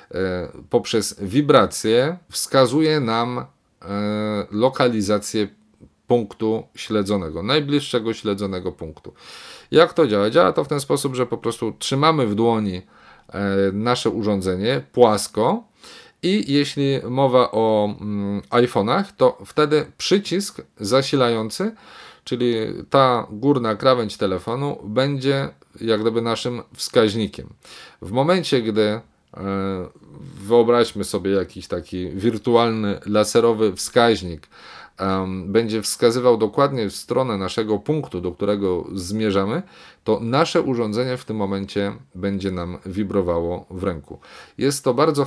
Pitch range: 100-125 Hz